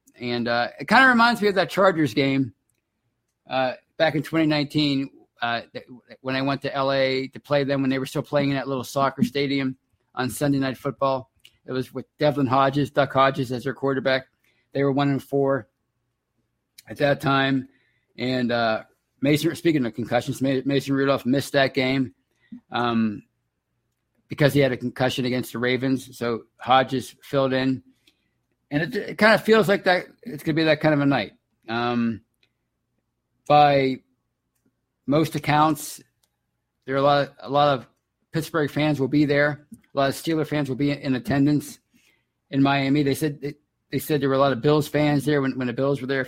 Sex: male